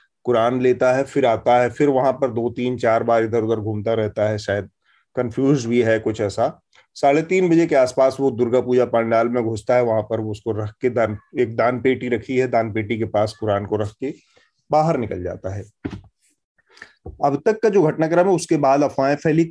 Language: Hindi